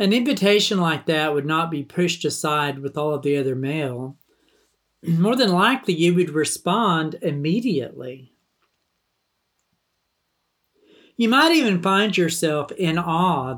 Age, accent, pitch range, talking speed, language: 40-59, American, 130-175 Hz, 130 wpm, English